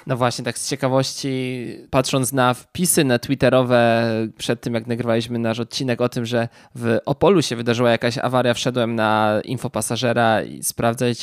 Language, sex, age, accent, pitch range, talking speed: Polish, male, 20-39, native, 115-130 Hz, 160 wpm